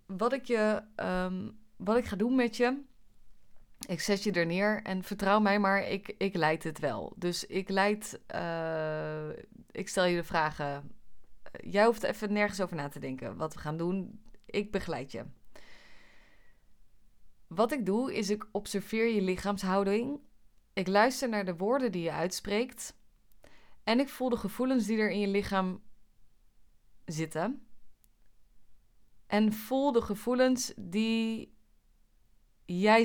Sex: female